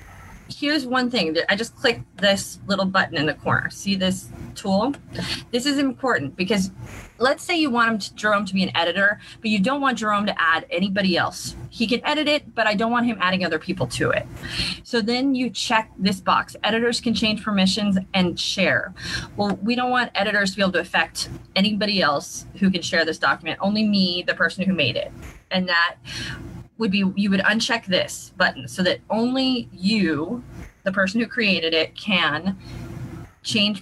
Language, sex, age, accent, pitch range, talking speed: English, female, 30-49, American, 180-225 Hz, 195 wpm